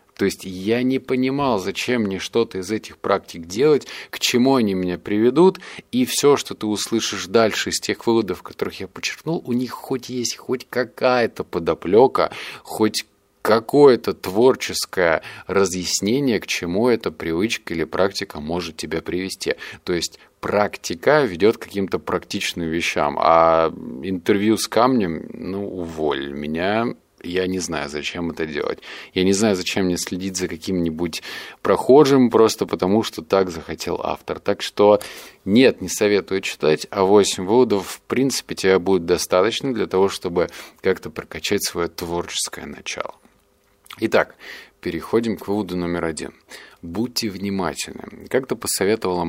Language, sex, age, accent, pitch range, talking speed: Russian, male, 20-39, native, 85-115 Hz, 140 wpm